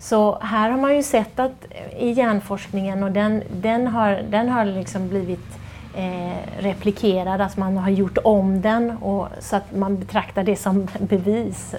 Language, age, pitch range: Swedish, 30-49, 185-215 Hz